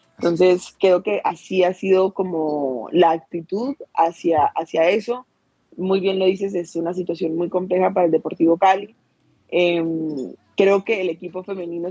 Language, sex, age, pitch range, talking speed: Spanish, female, 20-39, 165-190 Hz, 155 wpm